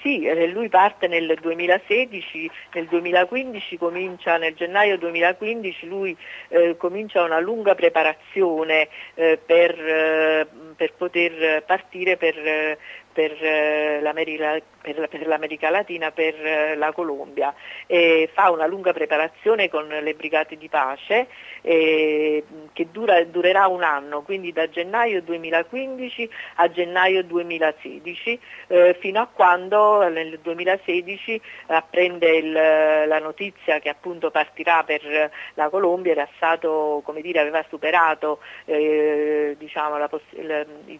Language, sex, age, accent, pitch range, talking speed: Italian, female, 50-69, native, 155-180 Hz, 115 wpm